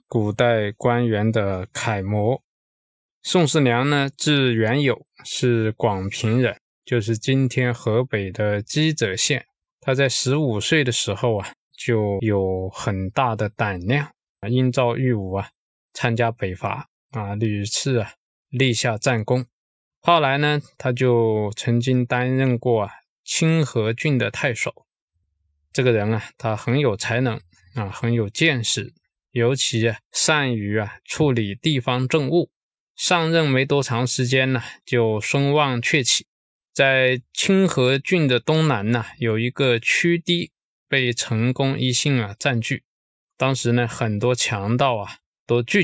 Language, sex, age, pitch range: Chinese, male, 20-39, 110-135 Hz